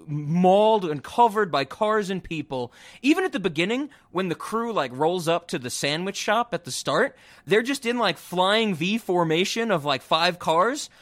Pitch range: 135-190 Hz